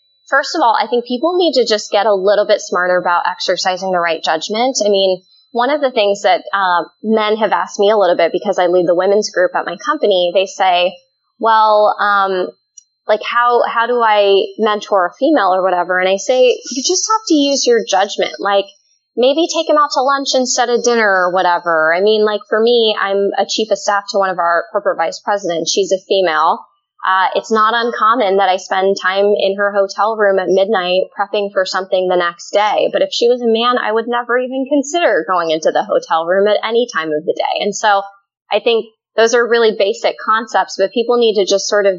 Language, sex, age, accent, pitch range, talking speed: English, female, 20-39, American, 190-235 Hz, 225 wpm